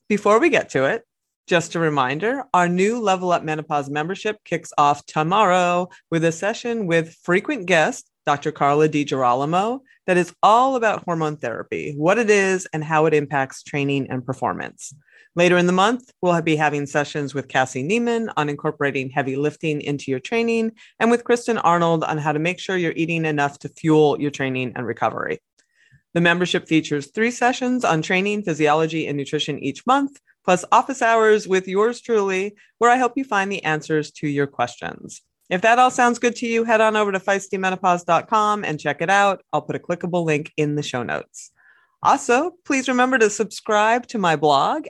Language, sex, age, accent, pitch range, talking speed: English, female, 30-49, American, 150-220 Hz, 185 wpm